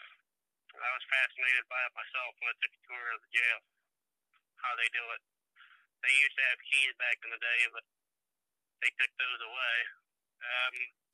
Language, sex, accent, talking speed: English, male, American, 180 wpm